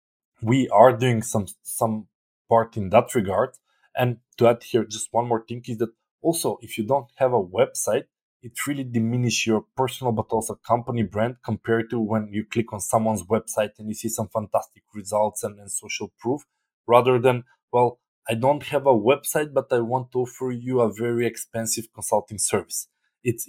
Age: 20-39